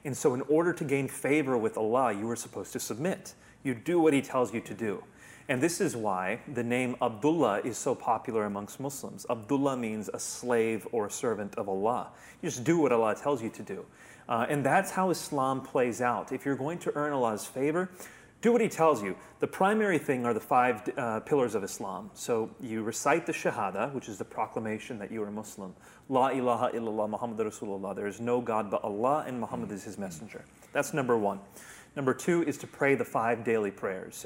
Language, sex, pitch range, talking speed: English, male, 110-140 Hz, 215 wpm